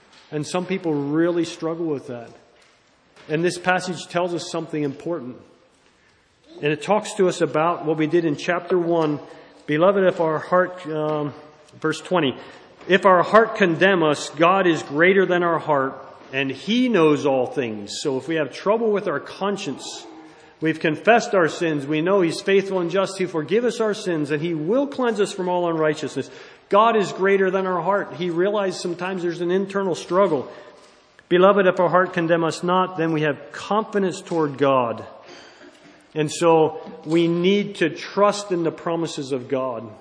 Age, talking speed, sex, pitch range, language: 40-59, 175 wpm, male, 150-185 Hz, English